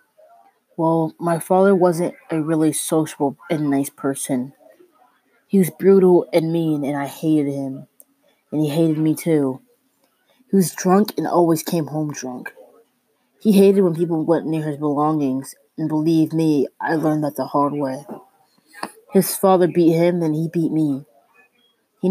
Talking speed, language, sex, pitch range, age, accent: 155 wpm, English, female, 150-185 Hz, 20-39, American